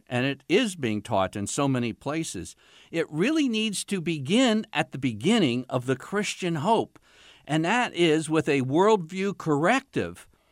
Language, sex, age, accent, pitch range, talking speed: English, male, 60-79, American, 100-165 Hz, 160 wpm